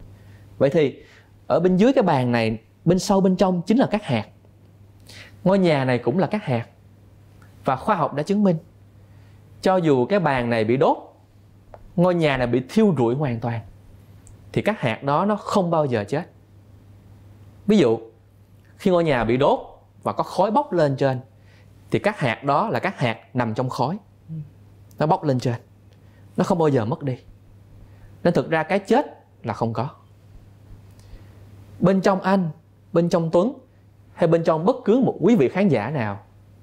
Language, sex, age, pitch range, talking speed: Vietnamese, male, 20-39, 100-155 Hz, 180 wpm